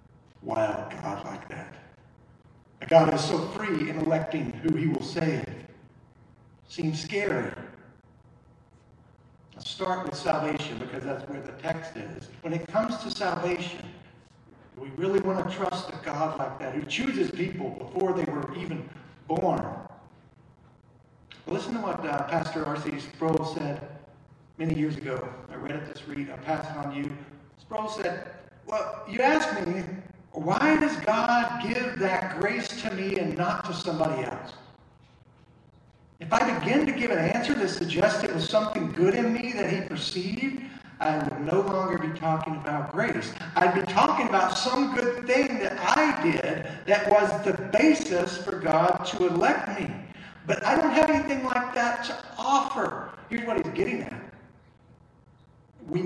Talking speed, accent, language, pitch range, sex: 160 wpm, American, English, 155-210 Hz, male